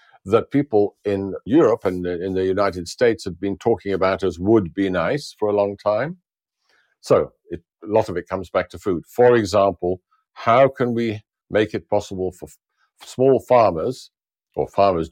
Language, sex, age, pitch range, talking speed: English, male, 60-79, 90-110 Hz, 170 wpm